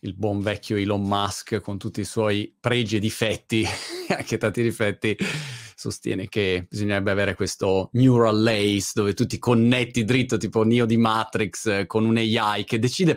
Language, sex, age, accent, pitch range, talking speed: Italian, male, 30-49, native, 105-145 Hz, 165 wpm